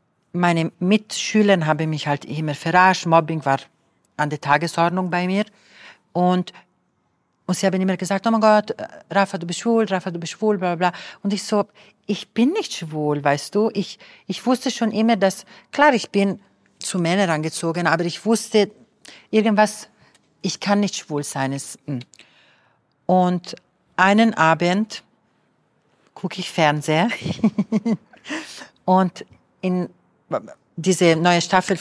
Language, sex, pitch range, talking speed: German, female, 165-205 Hz, 140 wpm